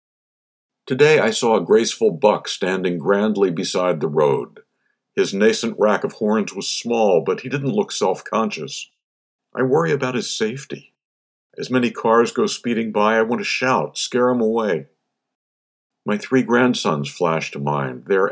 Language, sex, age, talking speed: English, male, 60-79, 155 wpm